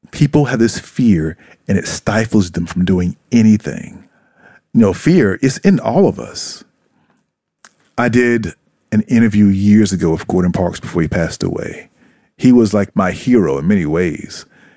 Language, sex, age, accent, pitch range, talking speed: English, male, 40-59, American, 100-145 Hz, 165 wpm